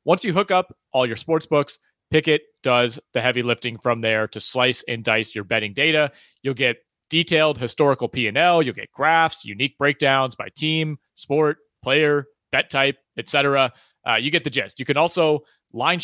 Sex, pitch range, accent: male, 120-155 Hz, American